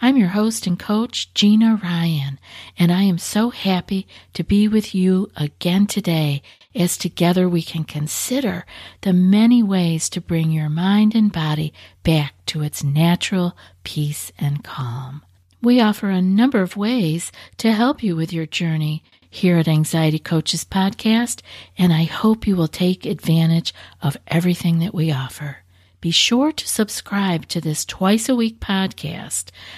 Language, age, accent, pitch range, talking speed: English, 50-69, American, 160-220 Hz, 155 wpm